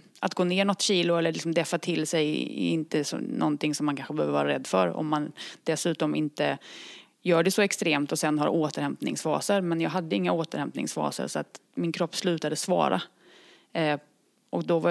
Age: 30-49